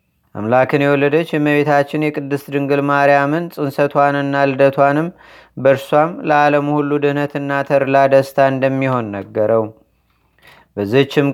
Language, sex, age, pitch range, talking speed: Amharic, male, 30-49, 135-145 Hz, 100 wpm